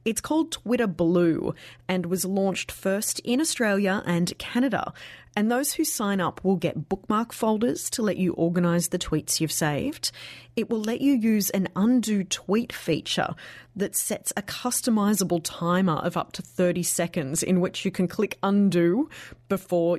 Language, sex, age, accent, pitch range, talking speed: English, female, 30-49, Australian, 165-220 Hz, 165 wpm